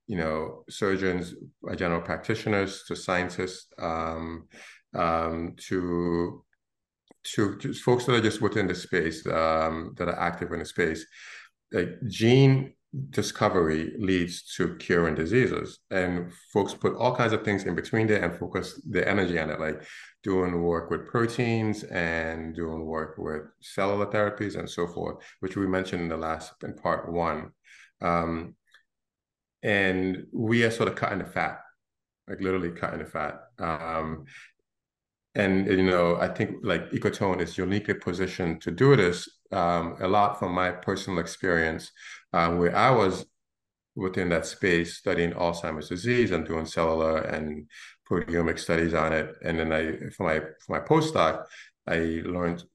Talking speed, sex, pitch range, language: 155 wpm, male, 85-100 Hz, English